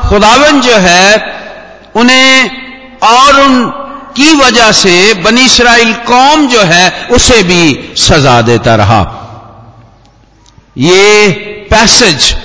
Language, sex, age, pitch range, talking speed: Hindi, male, 50-69, 155-245 Hz, 95 wpm